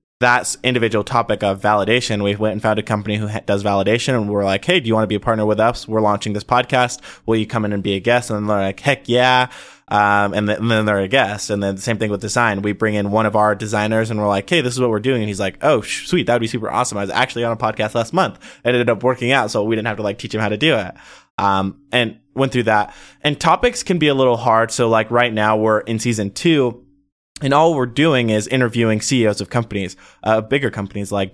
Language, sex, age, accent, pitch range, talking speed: English, male, 20-39, American, 105-125 Hz, 280 wpm